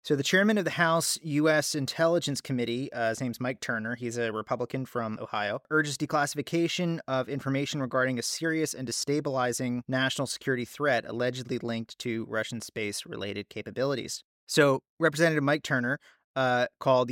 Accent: American